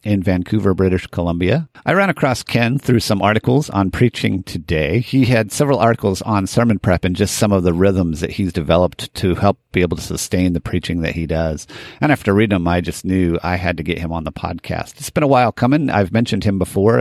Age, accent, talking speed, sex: 50-69, American, 230 wpm, male